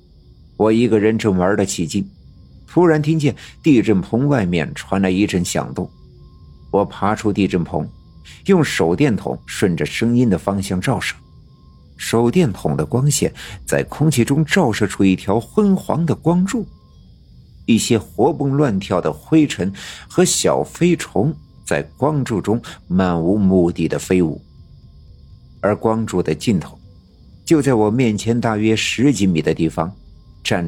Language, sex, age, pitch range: Chinese, male, 50-69, 90-125 Hz